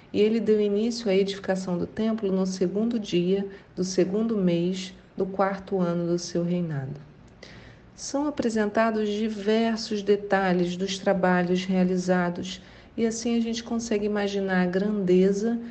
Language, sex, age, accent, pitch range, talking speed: Portuguese, female, 40-59, Brazilian, 180-220 Hz, 135 wpm